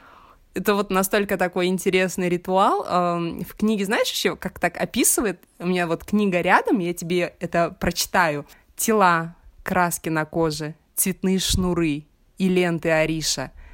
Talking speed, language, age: 135 wpm, Russian, 20-39